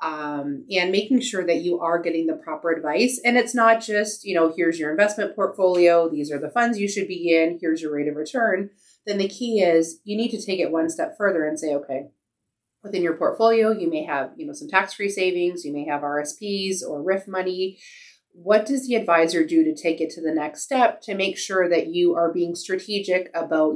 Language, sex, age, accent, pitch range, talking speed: English, female, 30-49, American, 155-200 Hz, 220 wpm